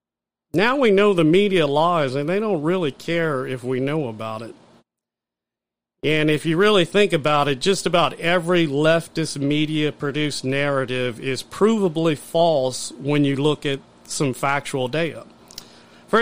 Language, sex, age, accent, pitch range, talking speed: English, male, 40-59, American, 135-180 Hz, 150 wpm